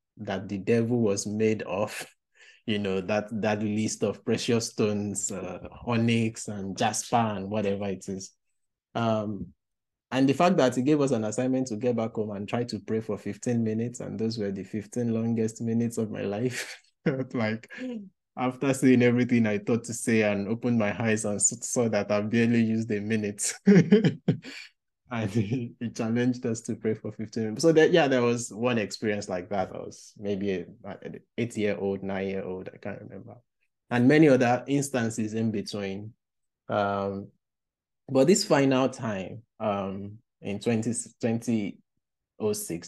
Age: 20-39